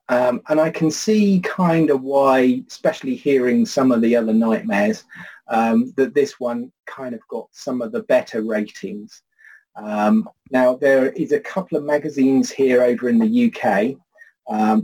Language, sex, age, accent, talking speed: English, male, 30-49, British, 165 wpm